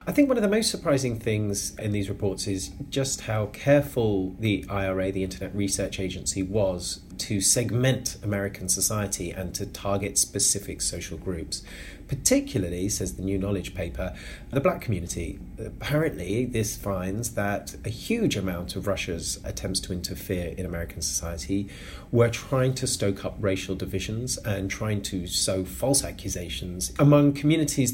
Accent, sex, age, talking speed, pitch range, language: British, male, 30-49, 155 wpm, 95-115 Hz, English